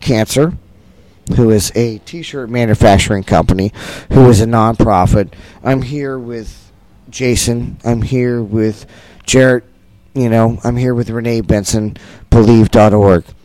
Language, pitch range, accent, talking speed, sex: English, 100-125 Hz, American, 130 wpm, male